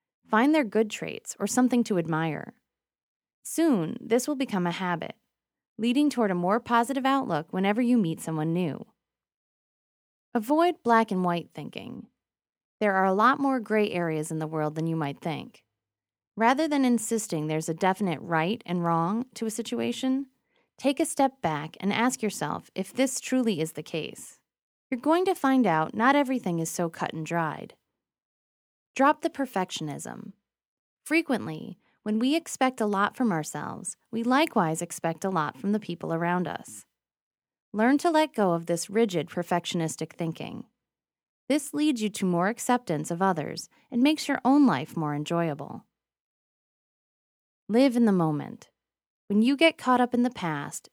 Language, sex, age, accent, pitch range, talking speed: English, female, 20-39, American, 165-255 Hz, 165 wpm